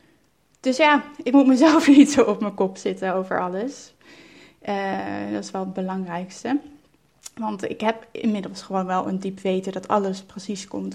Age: 20-39